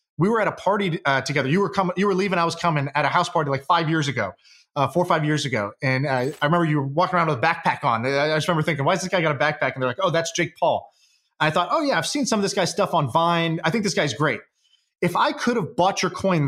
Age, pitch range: 30-49, 150-185 Hz